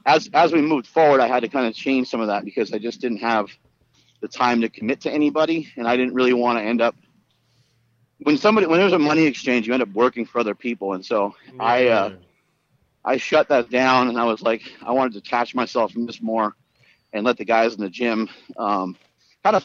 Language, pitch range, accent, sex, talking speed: English, 115-135 Hz, American, male, 235 wpm